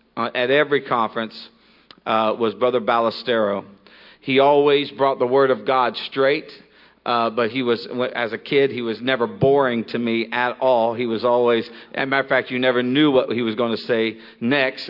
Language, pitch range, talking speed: English, 120-145 Hz, 195 wpm